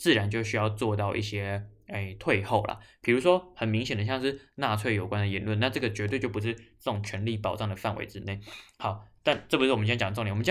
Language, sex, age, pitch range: Chinese, male, 20-39, 105-130 Hz